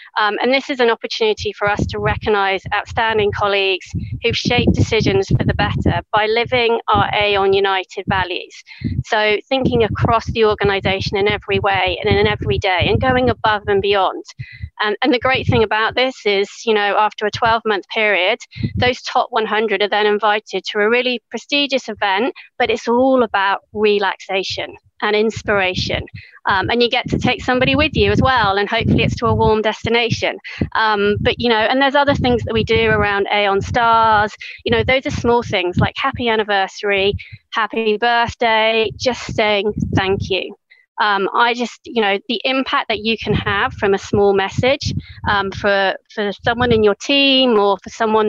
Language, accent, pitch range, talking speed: English, British, 205-240 Hz, 185 wpm